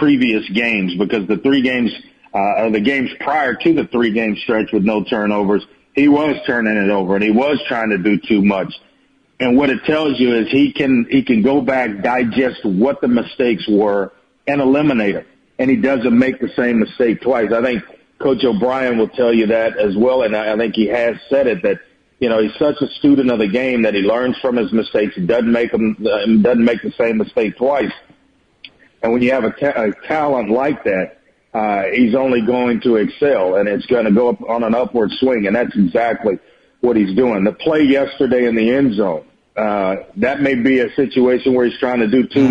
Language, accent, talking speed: English, American, 215 wpm